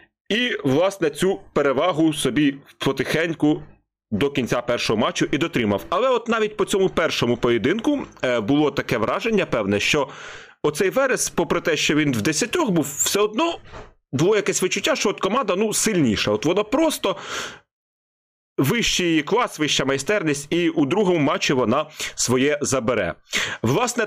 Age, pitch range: 30-49, 130-180 Hz